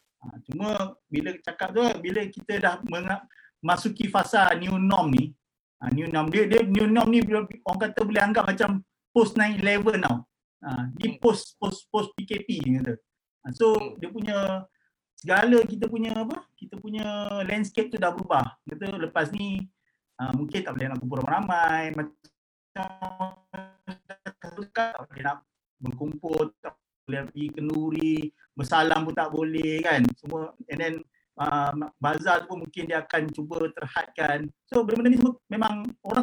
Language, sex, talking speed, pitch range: Malay, male, 135 wpm, 150-215 Hz